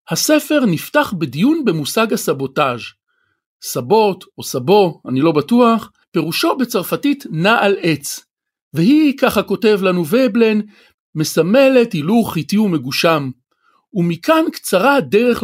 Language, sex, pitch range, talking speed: Hebrew, male, 155-225 Hz, 110 wpm